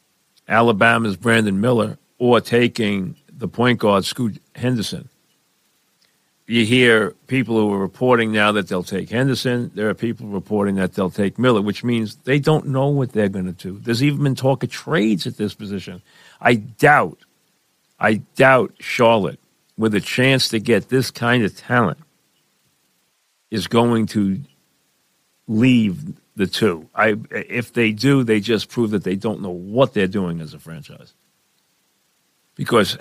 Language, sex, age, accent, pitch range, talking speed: English, male, 50-69, American, 100-120 Hz, 155 wpm